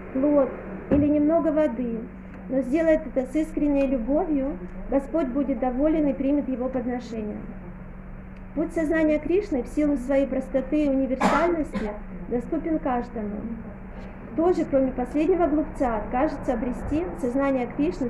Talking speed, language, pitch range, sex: 120 wpm, German, 240-290 Hz, female